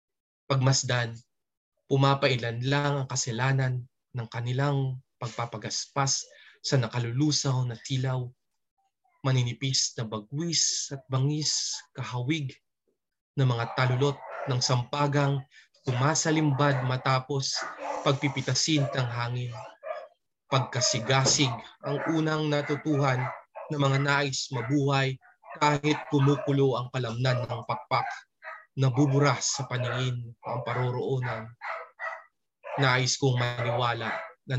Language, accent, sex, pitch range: English, Filipino, male, 125-145 Hz